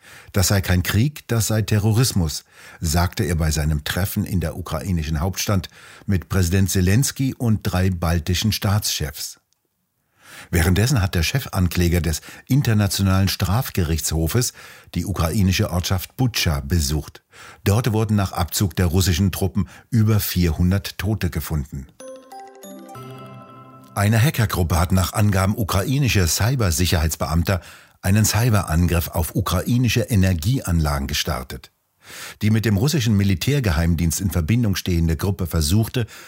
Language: German